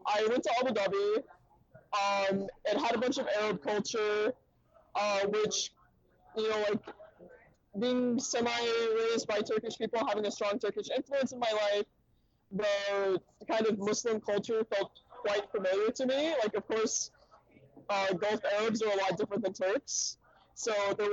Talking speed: 155 wpm